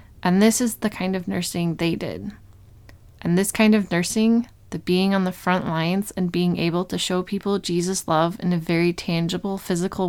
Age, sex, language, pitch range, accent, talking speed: 20-39, female, English, 170-200 Hz, American, 195 wpm